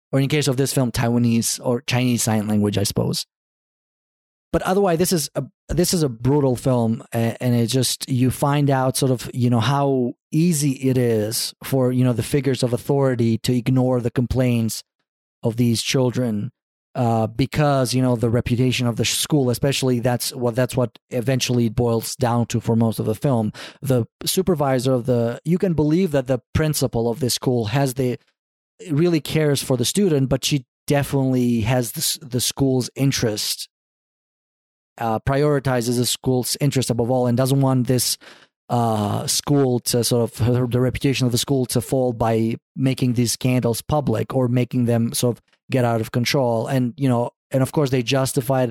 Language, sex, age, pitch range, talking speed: English, male, 30-49, 115-135 Hz, 180 wpm